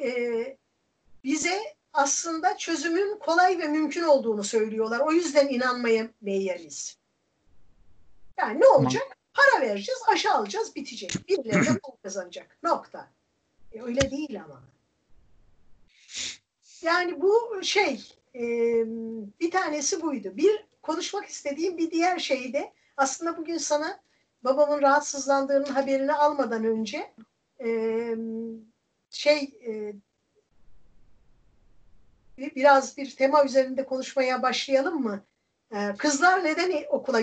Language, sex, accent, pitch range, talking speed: Turkish, female, native, 230-295 Hz, 100 wpm